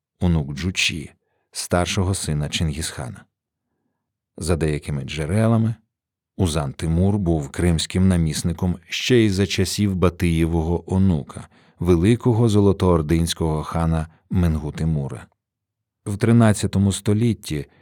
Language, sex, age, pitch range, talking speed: Ukrainian, male, 50-69, 85-110 Hz, 90 wpm